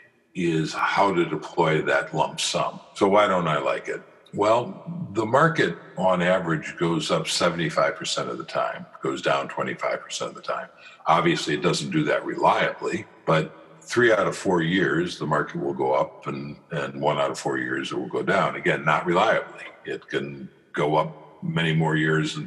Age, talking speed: 60-79, 185 wpm